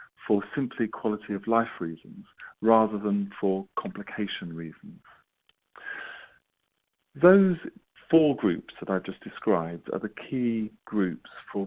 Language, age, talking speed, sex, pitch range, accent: English, 40-59, 120 wpm, male, 95-115 Hz, British